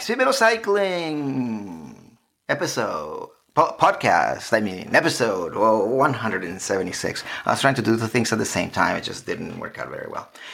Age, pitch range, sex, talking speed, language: 30-49, 110-165 Hz, male, 155 wpm, English